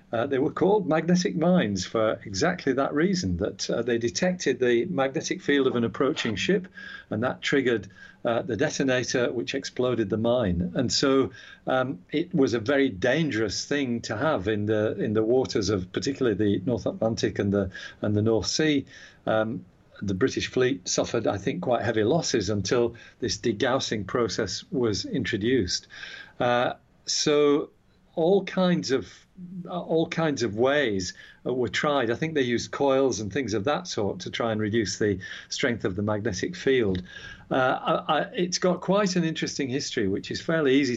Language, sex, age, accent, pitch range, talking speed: English, male, 50-69, British, 115-160 Hz, 170 wpm